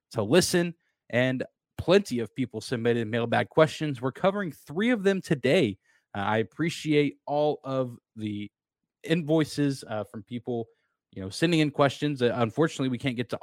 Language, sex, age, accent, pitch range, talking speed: English, male, 20-39, American, 115-150 Hz, 160 wpm